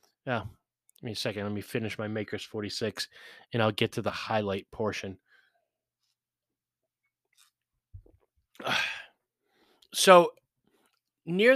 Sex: male